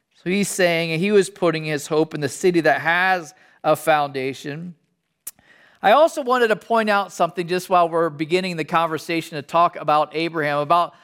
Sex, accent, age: male, American, 40-59